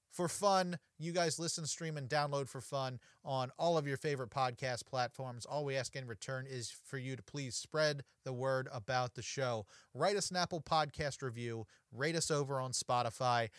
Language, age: English, 30-49